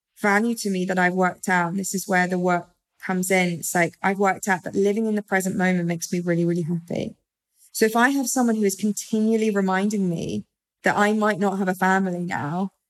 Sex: female